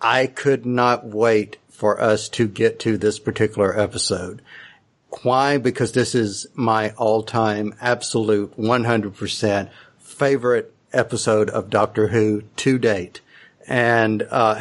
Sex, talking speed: male, 120 wpm